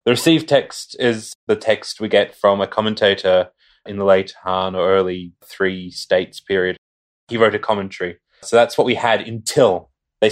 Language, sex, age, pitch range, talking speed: English, male, 20-39, 95-125 Hz, 180 wpm